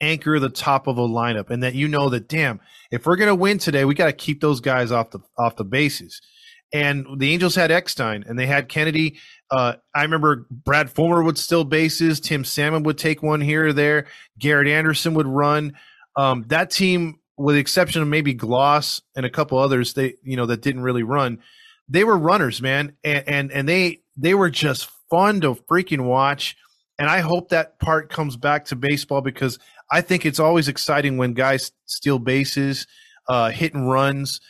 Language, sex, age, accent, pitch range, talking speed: English, male, 20-39, American, 130-155 Hz, 200 wpm